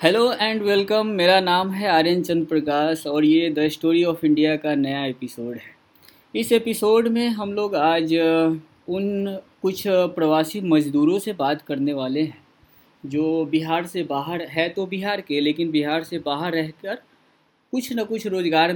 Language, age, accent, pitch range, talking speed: Hindi, 20-39, native, 155-215 Hz, 160 wpm